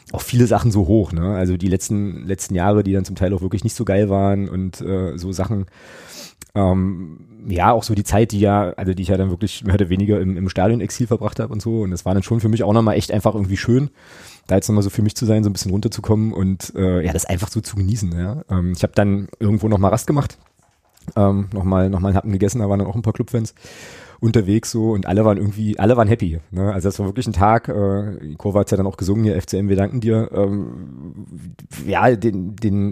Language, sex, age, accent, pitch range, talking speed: German, male, 30-49, German, 95-115 Hz, 250 wpm